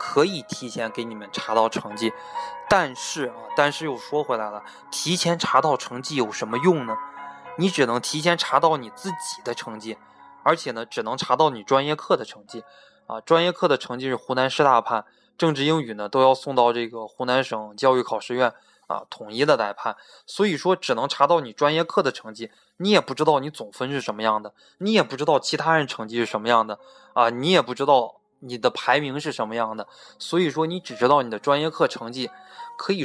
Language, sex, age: Chinese, male, 20-39